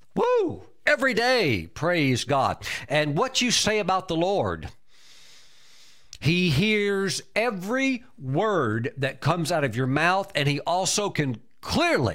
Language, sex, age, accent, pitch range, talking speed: English, male, 50-69, American, 130-190 Hz, 135 wpm